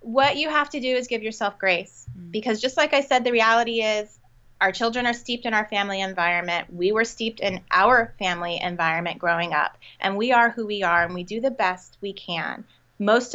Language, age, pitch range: English, 30-49, 195-270 Hz